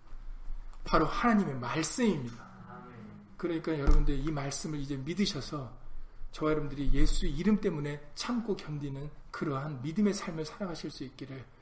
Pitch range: 125-160 Hz